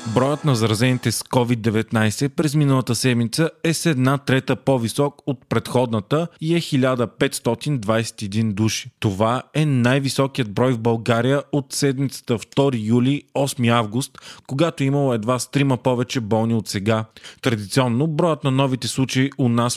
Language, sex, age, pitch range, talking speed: Bulgarian, male, 20-39, 115-140 Hz, 140 wpm